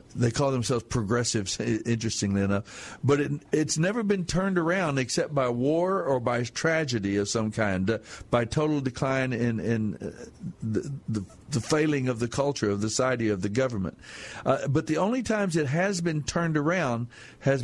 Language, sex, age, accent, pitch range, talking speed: English, male, 60-79, American, 110-150 Hz, 175 wpm